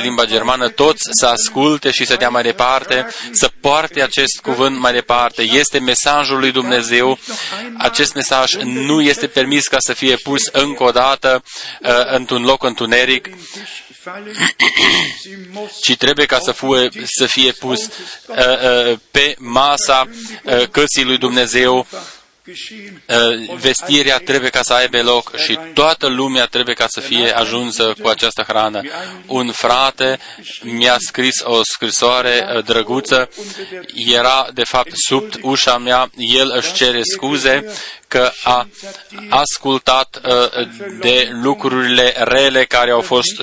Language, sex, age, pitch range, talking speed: Romanian, male, 20-39, 125-140 Hz, 125 wpm